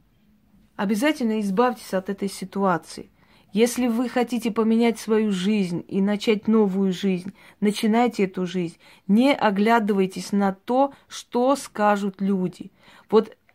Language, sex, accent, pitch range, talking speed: Russian, female, native, 195-240 Hz, 115 wpm